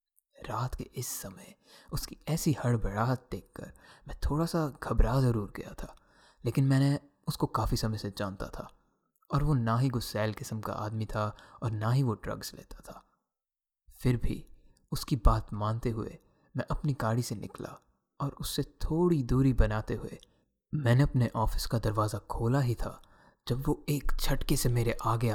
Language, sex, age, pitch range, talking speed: Hindi, male, 20-39, 110-135 Hz, 170 wpm